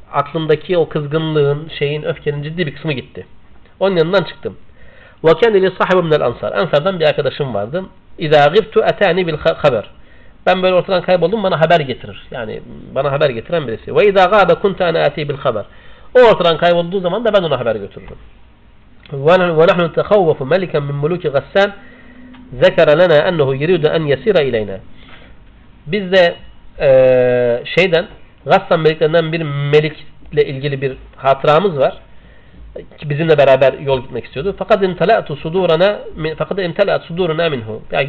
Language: Turkish